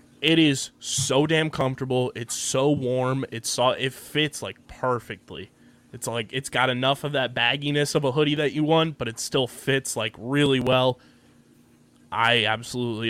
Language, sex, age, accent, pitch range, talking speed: English, male, 20-39, American, 120-145 Hz, 175 wpm